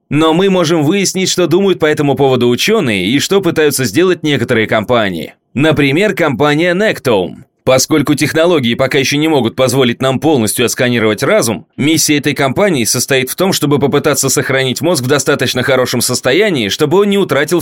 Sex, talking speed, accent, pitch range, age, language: male, 165 wpm, native, 125-165 Hz, 20-39, Russian